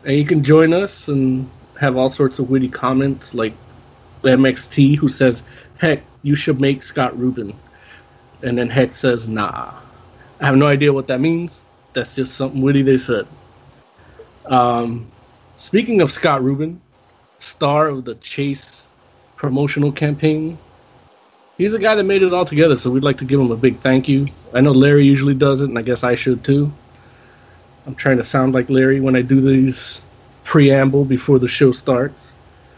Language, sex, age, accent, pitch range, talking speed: English, male, 30-49, American, 125-150 Hz, 175 wpm